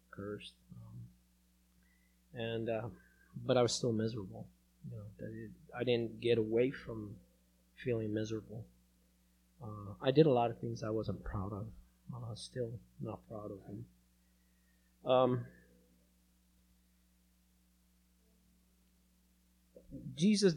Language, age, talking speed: English, 30-49, 110 wpm